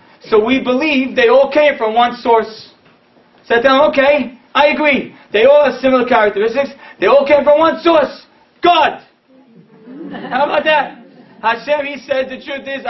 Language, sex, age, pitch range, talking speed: English, male, 40-59, 215-275 Hz, 170 wpm